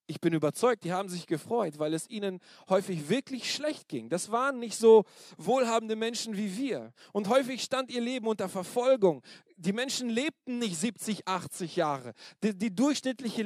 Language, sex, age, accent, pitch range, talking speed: German, male, 40-59, German, 190-265 Hz, 170 wpm